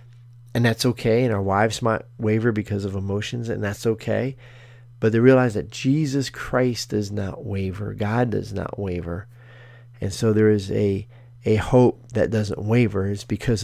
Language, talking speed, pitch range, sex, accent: English, 170 wpm, 110-125 Hz, male, American